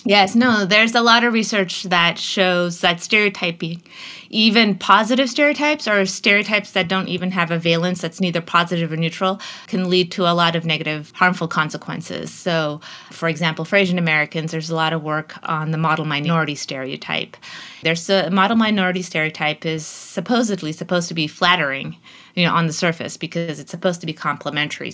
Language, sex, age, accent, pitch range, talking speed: English, female, 30-49, American, 160-190 Hz, 180 wpm